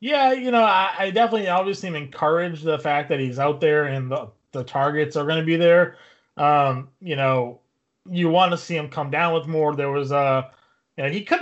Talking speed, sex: 220 wpm, male